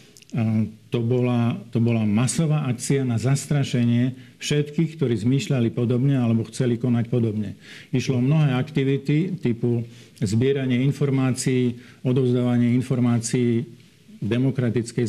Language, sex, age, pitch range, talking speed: Slovak, male, 50-69, 120-140 Hz, 105 wpm